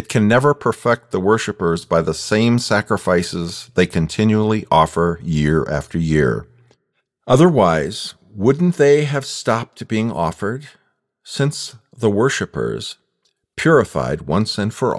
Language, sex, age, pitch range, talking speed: English, male, 50-69, 105-135 Hz, 120 wpm